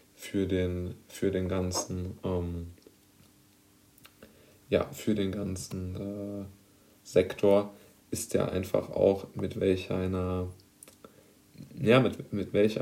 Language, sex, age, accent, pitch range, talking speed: German, male, 20-39, German, 95-110 Hz, 110 wpm